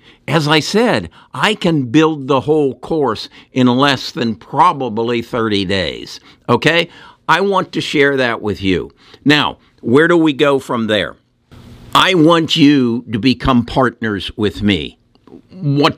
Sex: male